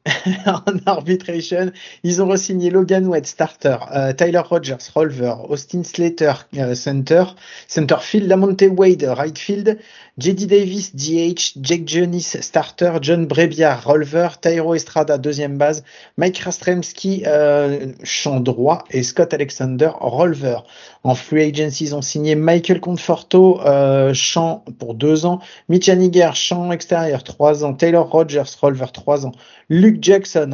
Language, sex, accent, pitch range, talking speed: French, male, French, 145-175 Hz, 135 wpm